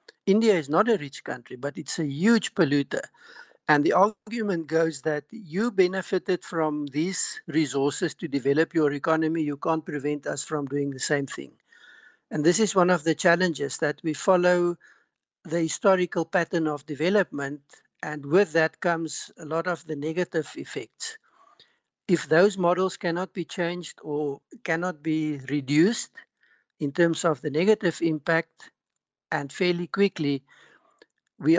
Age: 60-79